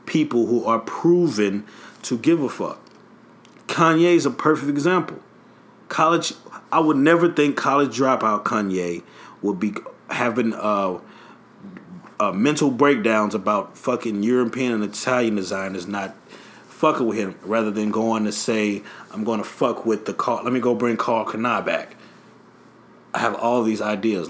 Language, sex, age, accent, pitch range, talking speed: English, male, 30-49, American, 110-145 Hz, 155 wpm